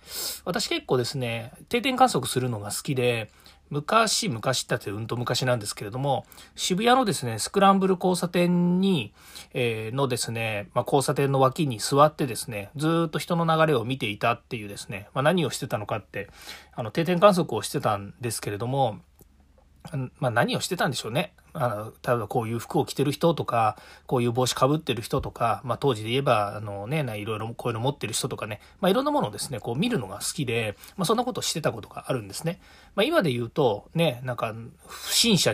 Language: Japanese